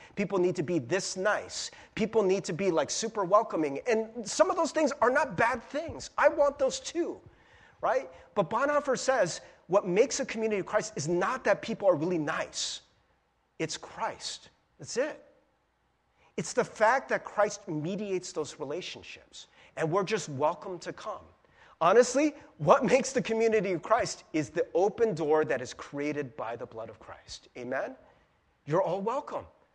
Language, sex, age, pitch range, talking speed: English, male, 30-49, 175-230 Hz, 170 wpm